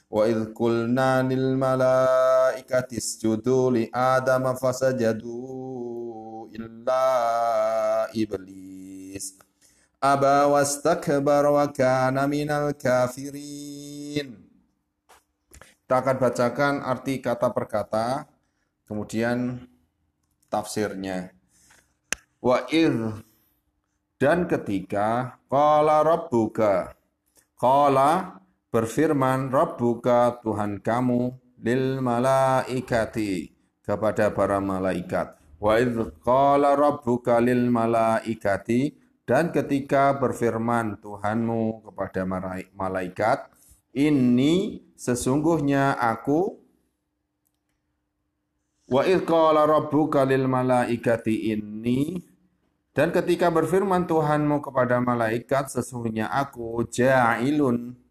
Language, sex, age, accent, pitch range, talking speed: Indonesian, male, 30-49, native, 110-135 Hz, 70 wpm